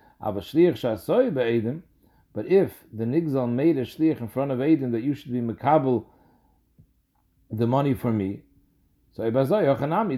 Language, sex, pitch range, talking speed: English, male, 120-160 Hz, 135 wpm